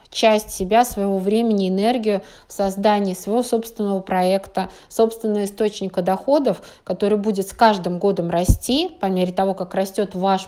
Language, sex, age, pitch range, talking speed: Russian, female, 20-39, 190-220 Hz, 145 wpm